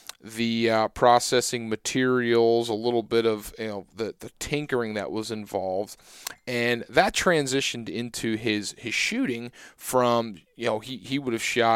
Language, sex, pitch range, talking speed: English, male, 105-125 Hz, 160 wpm